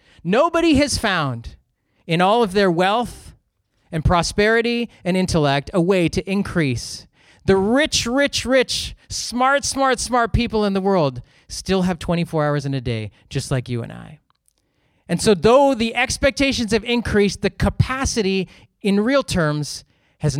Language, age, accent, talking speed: English, 30-49, American, 155 wpm